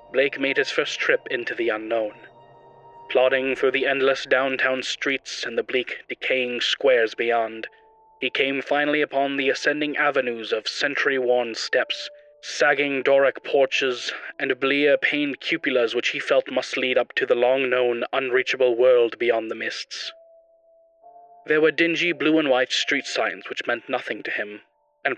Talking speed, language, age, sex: 155 wpm, English, 30-49, male